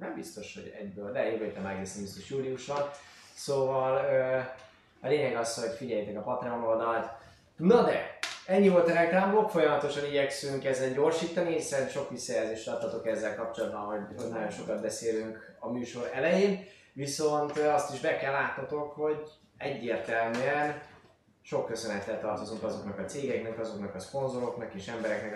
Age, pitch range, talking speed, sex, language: 20-39, 115-150 Hz, 145 wpm, male, Hungarian